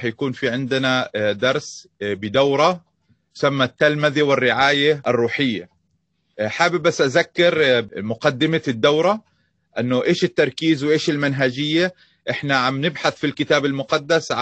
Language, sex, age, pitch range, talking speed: Arabic, male, 30-49, 130-160 Hz, 105 wpm